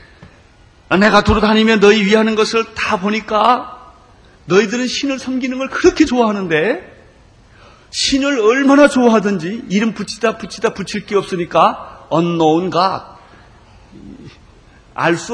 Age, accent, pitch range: 40-59, native, 150-220 Hz